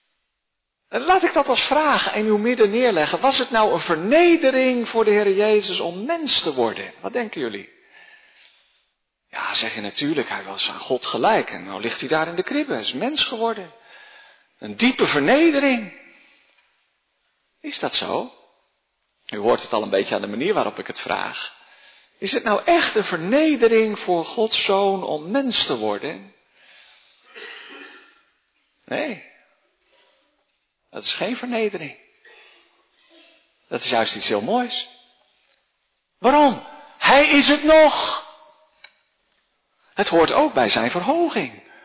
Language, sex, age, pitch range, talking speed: Dutch, male, 50-69, 200-310 Hz, 145 wpm